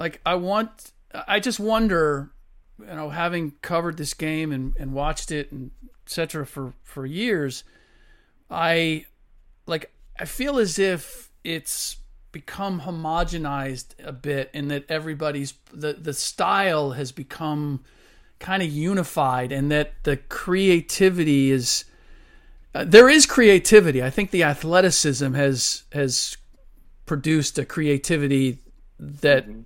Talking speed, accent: 125 wpm, American